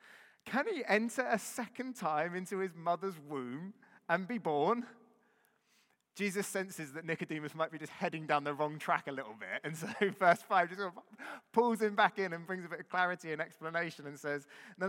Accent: British